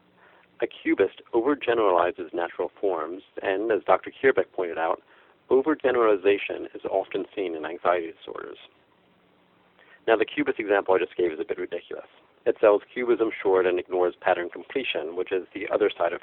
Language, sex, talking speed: English, male, 160 wpm